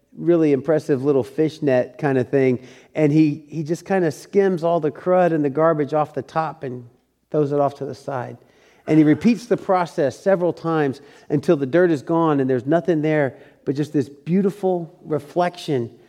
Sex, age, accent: male, 40-59, American